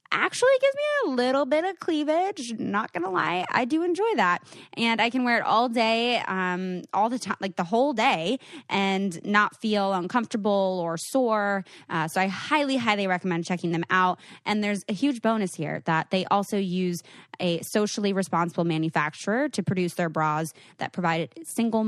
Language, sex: English, female